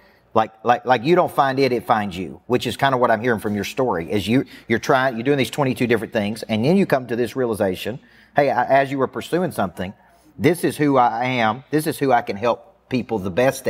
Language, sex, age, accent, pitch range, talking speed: English, male, 40-59, American, 110-135 Hz, 255 wpm